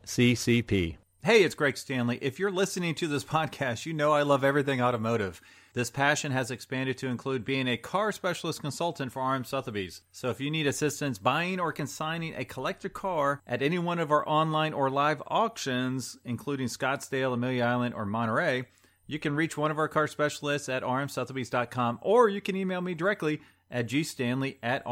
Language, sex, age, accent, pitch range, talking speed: English, male, 40-59, American, 125-155 Hz, 185 wpm